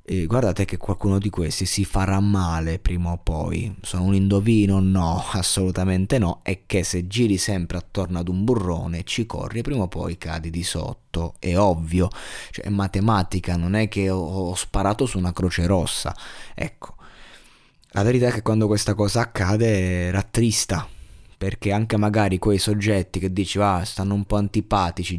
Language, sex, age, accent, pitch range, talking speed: Italian, male, 20-39, native, 90-105 Hz, 170 wpm